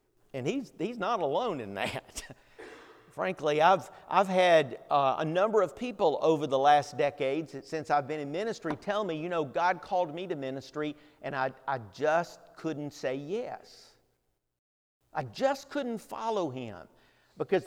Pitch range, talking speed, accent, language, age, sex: 145-210 Hz, 160 wpm, American, English, 50-69, male